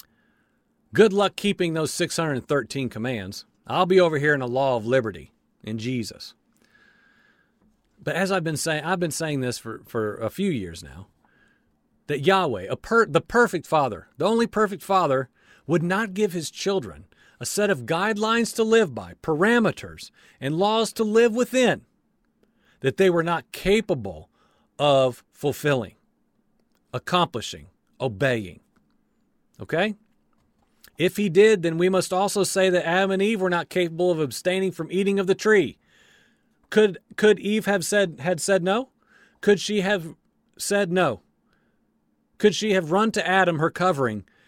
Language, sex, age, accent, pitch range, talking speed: English, male, 50-69, American, 135-205 Hz, 150 wpm